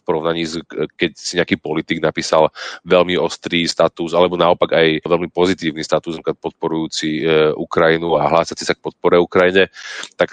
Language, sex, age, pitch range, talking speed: Slovak, male, 30-49, 80-90 Hz, 140 wpm